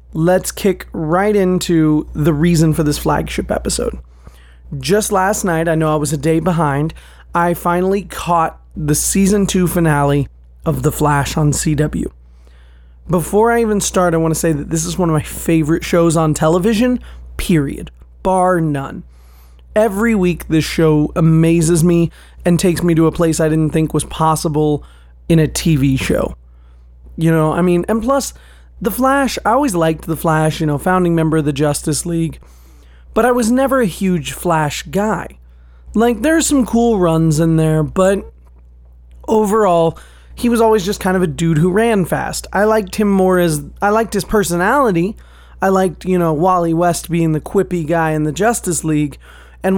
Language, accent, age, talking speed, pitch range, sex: English, American, 30-49, 180 wpm, 150-190 Hz, male